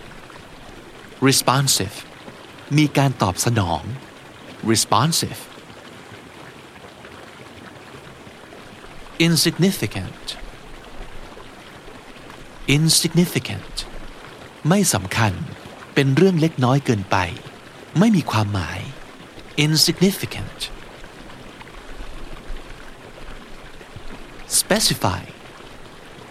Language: Thai